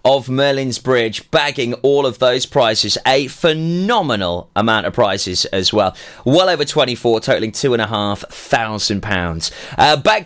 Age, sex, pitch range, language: 30-49, male, 105-150 Hz, English